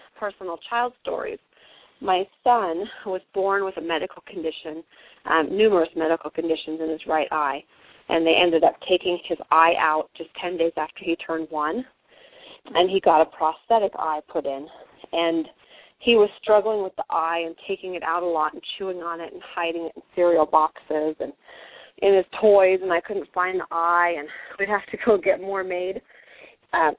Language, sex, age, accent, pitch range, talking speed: English, female, 30-49, American, 160-195 Hz, 185 wpm